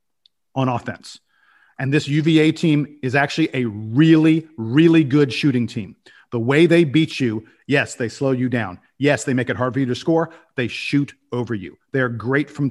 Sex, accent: male, American